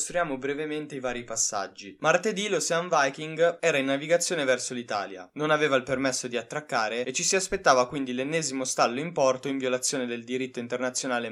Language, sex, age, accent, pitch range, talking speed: Italian, male, 20-39, native, 125-150 Hz, 170 wpm